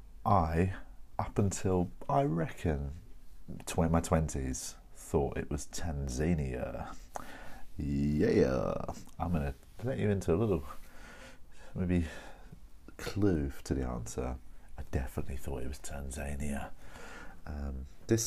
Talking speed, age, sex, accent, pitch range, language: 110 wpm, 40-59, male, British, 70-90 Hz, English